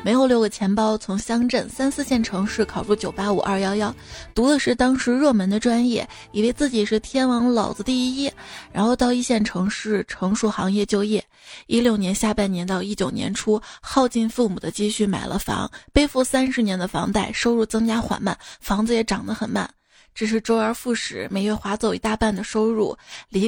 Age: 20-39